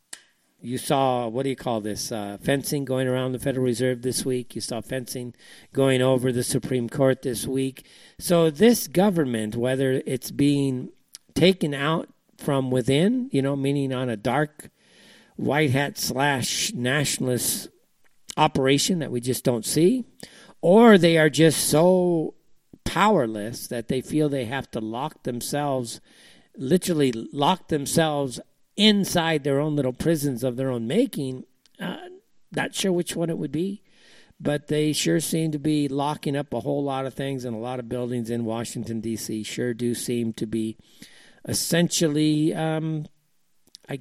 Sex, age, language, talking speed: male, 50-69, English, 155 wpm